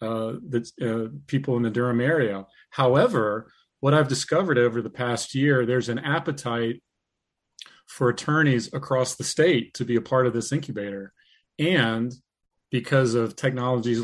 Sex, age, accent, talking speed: male, 40-59, American, 150 wpm